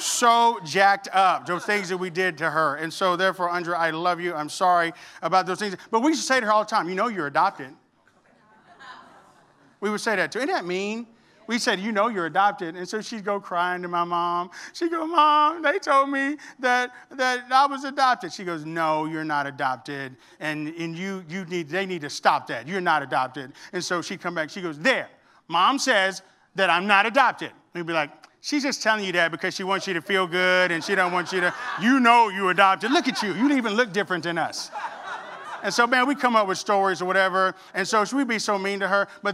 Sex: male